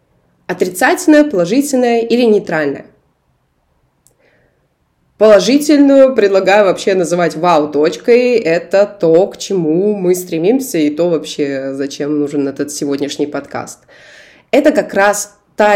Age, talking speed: 20-39, 105 wpm